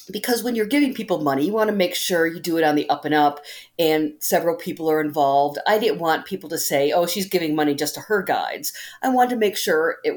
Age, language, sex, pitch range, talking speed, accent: 50-69, English, female, 155-215 Hz, 260 wpm, American